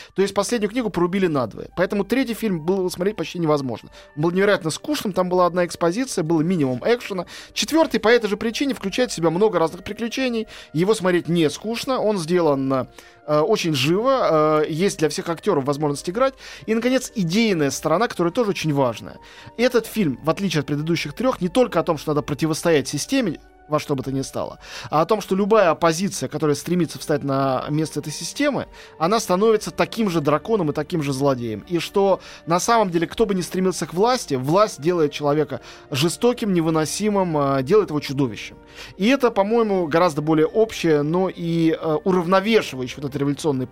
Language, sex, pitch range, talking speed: Russian, male, 145-205 Hz, 180 wpm